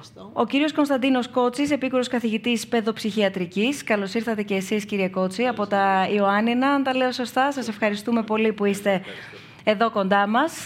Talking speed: 160 wpm